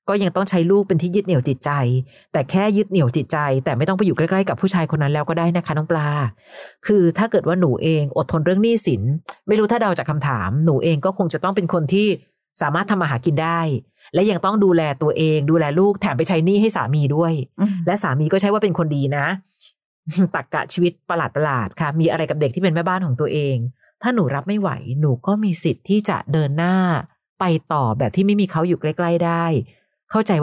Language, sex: Thai, female